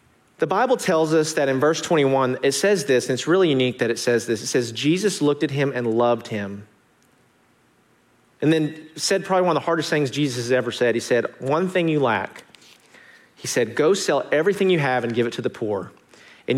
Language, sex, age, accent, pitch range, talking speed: English, male, 40-59, American, 120-155 Hz, 220 wpm